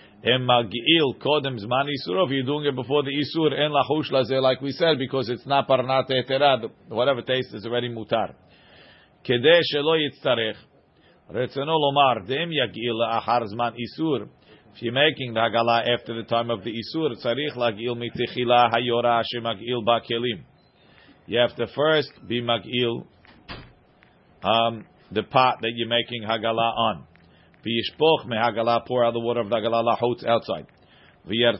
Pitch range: 115-140 Hz